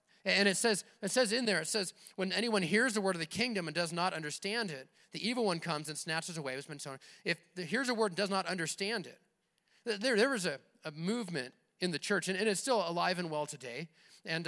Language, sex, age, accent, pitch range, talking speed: English, male, 30-49, American, 170-220 Hz, 255 wpm